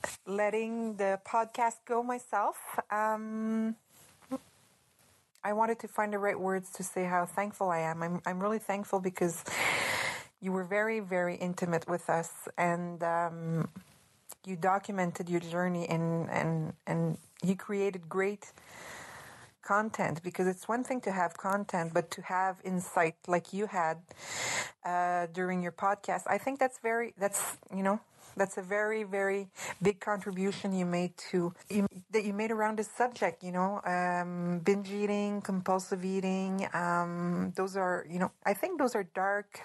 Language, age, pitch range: English, 30-49, 180-210 Hz